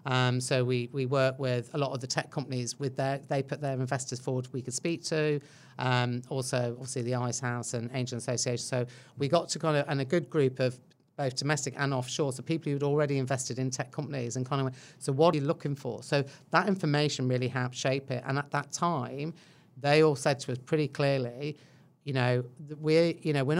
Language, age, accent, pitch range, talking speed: English, 40-59, British, 125-145 Hz, 230 wpm